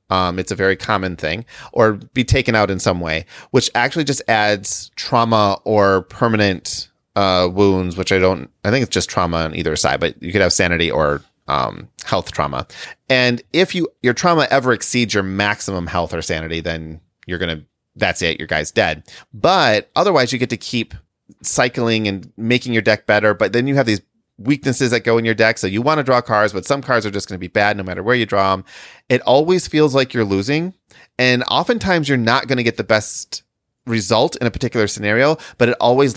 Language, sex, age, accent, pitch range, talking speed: English, male, 30-49, American, 95-125 Hz, 215 wpm